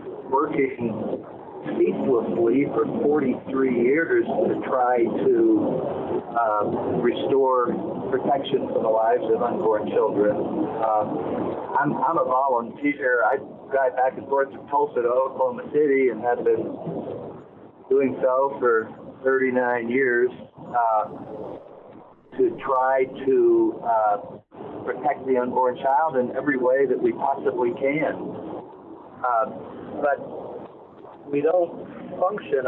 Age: 50-69